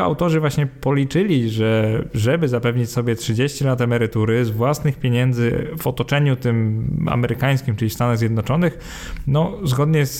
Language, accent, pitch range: Polish, native, 115-140 Hz